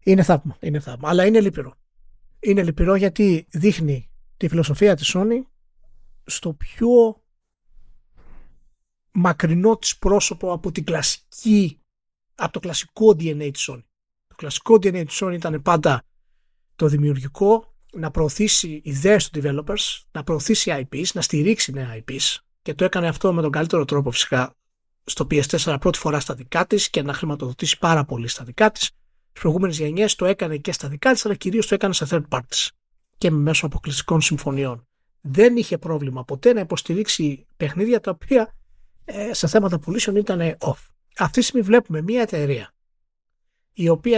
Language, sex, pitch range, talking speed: Greek, male, 145-200 Hz, 155 wpm